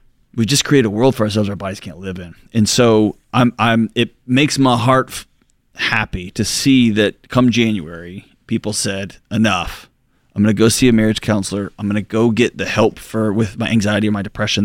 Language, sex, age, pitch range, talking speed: English, male, 30-49, 105-125 Hz, 205 wpm